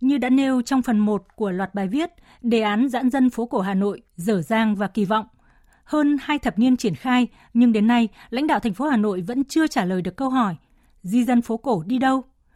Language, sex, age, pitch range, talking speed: Vietnamese, female, 20-39, 205-255 Hz, 245 wpm